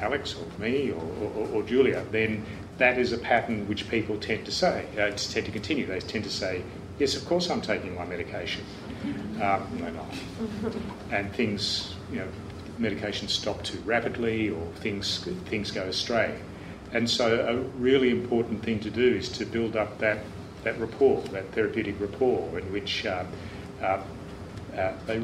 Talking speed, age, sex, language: 175 wpm, 40-59, male, English